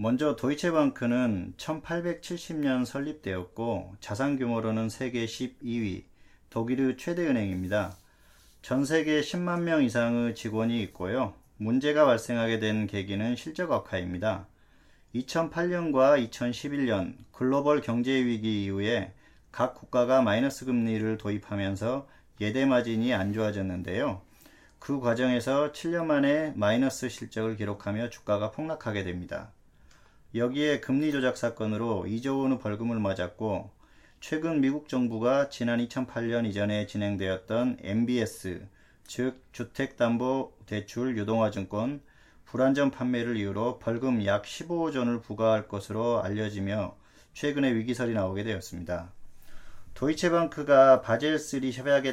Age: 40-59